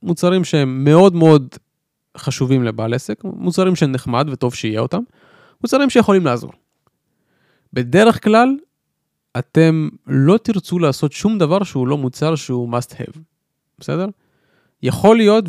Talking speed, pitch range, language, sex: 125 wpm, 130-185 Hz, Hebrew, male